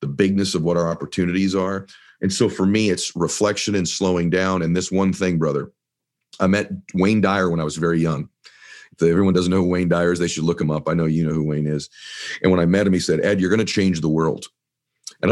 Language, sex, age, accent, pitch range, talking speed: English, male, 40-59, American, 85-105 Hz, 255 wpm